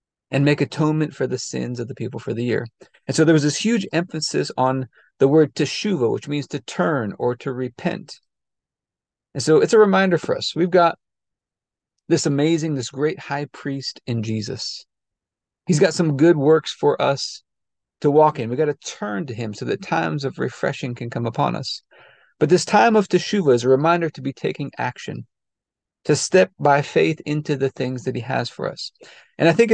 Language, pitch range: English, 130-170 Hz